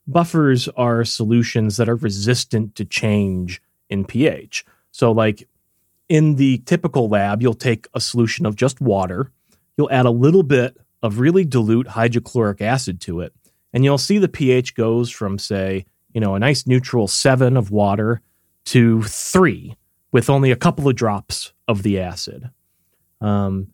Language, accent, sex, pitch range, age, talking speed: English, American, male, 100-130 Hz, 30-49, 160 wpm